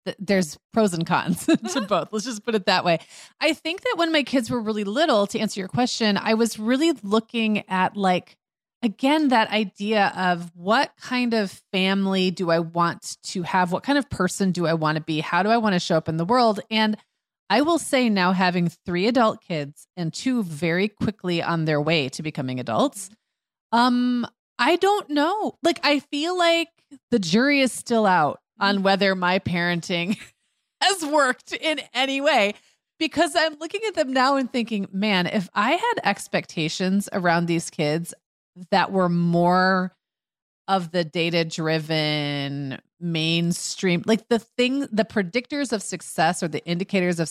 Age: 30-49